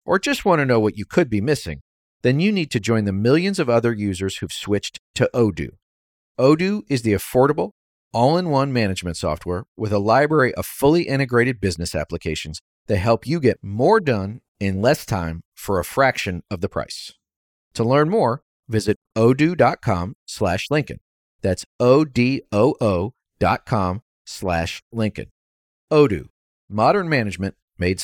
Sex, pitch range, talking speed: male, 95-160 Hz, 150 wpm